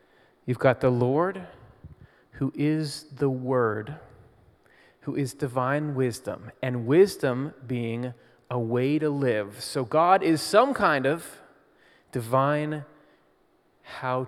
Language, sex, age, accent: English, male, 30-49, American